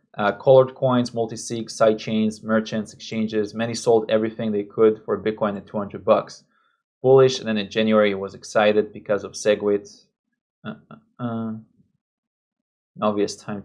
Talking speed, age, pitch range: 160 wpm, 20-39, 110-135 Hz